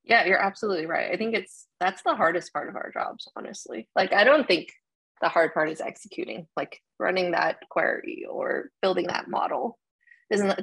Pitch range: 180-285 Hz